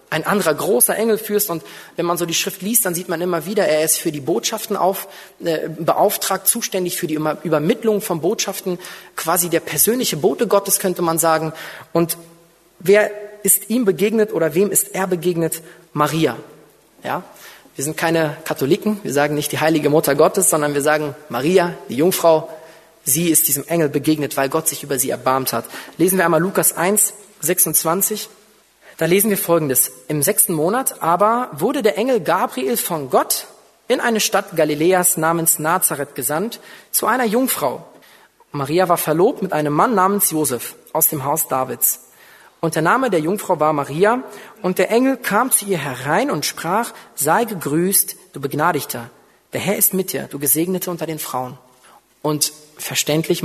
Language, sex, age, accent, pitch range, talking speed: German, male, 30-49, German, 155-200 Hz, 175 wpm